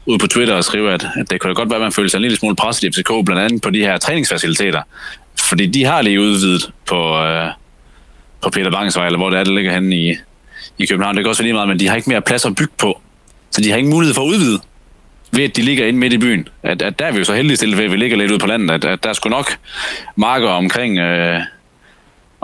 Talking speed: 275 wpm